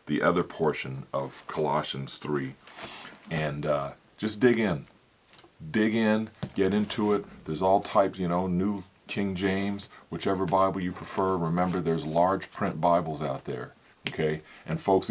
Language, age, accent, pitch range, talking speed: English, 40-59, American, 75-100 Hz, 150 wpm